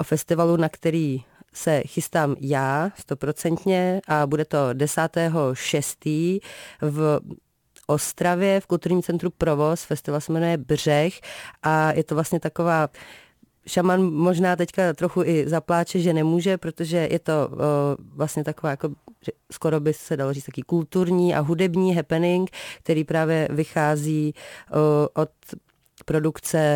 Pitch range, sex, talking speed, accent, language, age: 150-170 Hz, female, 125 wpm, native, Czech, 30-49